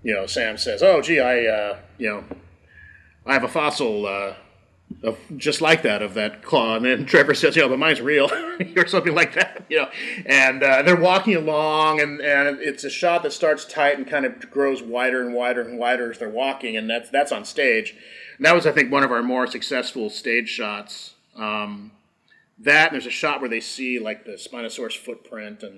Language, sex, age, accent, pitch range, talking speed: English, male, 30-49, American, 105-140 Hz, 220 wpm